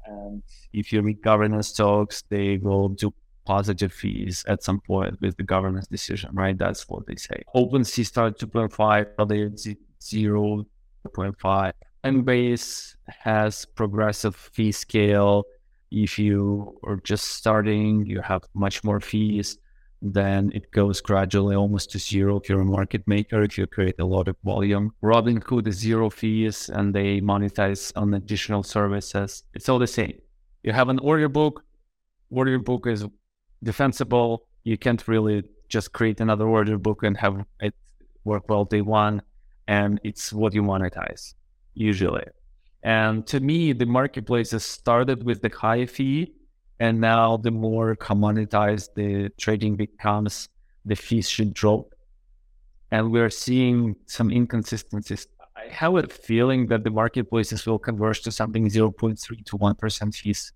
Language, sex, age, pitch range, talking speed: English, male, 30-49, 100-115 Hz, 150 wpm